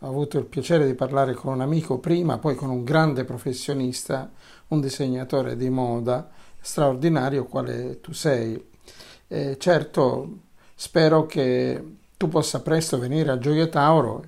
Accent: native